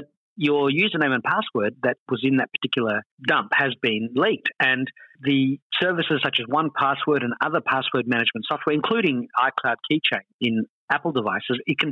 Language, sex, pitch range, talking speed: English, male, 125-155 Hz, 160 wpm